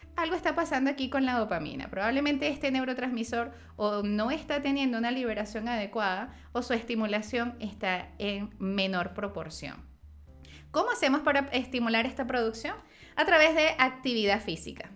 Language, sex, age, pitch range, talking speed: Spanish, female, 20-39, 190-245 Hz, 140 wpm